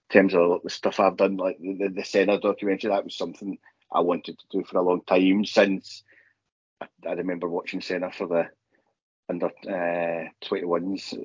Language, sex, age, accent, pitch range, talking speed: English, male, 30-49, British, 85-95 Hz, 170 wpm